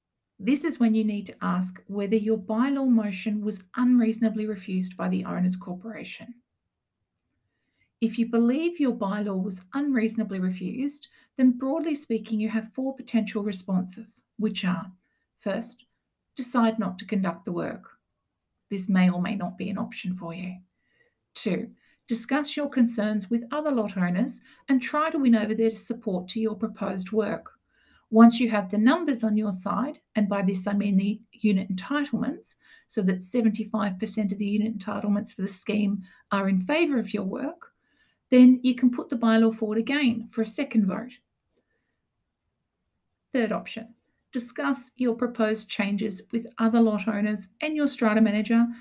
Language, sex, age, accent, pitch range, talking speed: English, female, 50-69, Australian, 205-255 Hz, 160 wpm